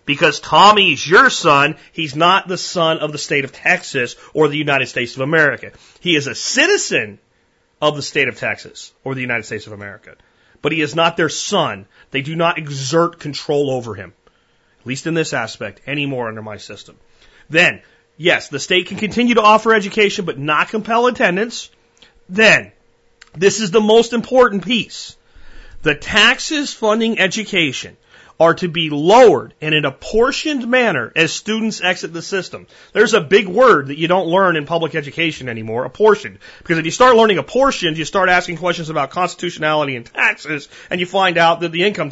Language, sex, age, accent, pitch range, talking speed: English, male, 30-49, American, 145-210 Hz, 180 wpm